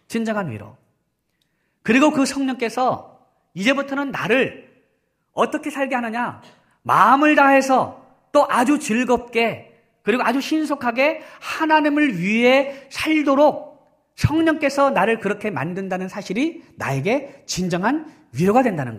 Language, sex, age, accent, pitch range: Korean, male, 40-59, native, 180-275 Hz